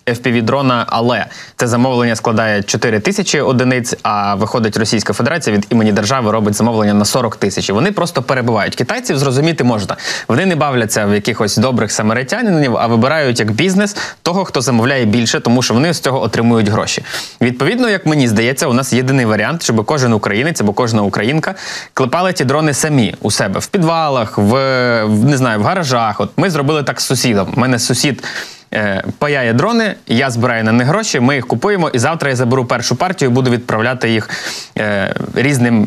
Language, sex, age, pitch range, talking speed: Ukrainian, male, 20-39, 115-150 Hz, 180 wpm